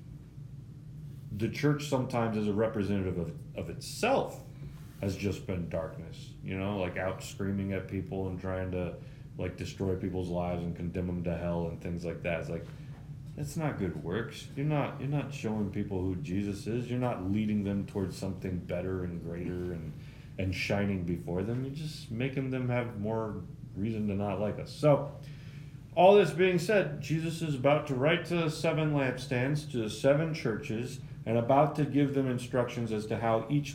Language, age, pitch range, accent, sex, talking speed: English, 30-49, 100-145 Hz, American, male, 185 wpm